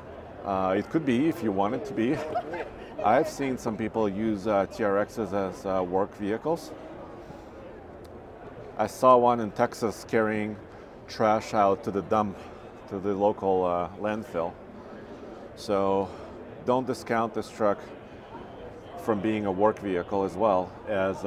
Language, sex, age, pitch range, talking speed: English, male, 40-59, 100-115 Hz, 140 wpm